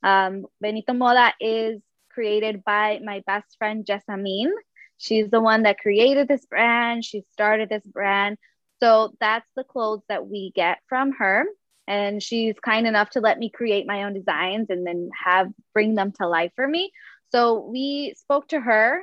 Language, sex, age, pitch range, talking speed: English, female, 20-39, 205-240 Hz, 175 wpm